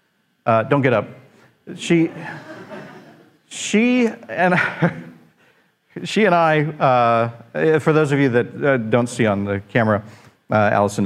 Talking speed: 135 wpm